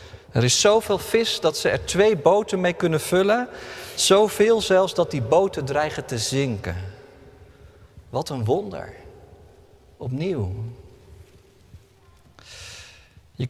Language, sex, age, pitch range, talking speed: Dutch, male, 40-59, 105-145 Hz, 110 wpm